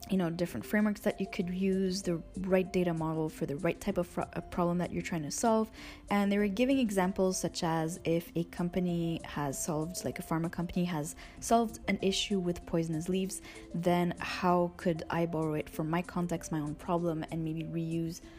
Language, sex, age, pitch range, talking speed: English, female, 20-39, 160-195 Hz, 205 wpm